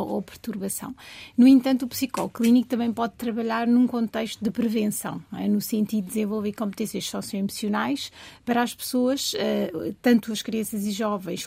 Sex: female